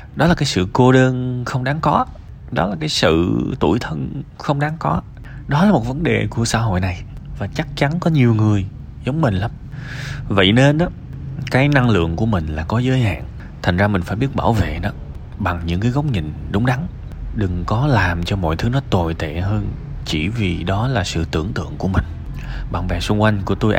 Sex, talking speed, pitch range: male, 220 wpm, 90-130 Hz